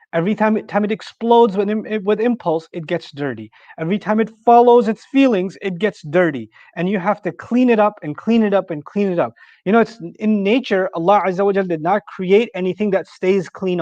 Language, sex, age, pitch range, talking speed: English, male, 30-49, 170-210 Hz, 205 wpm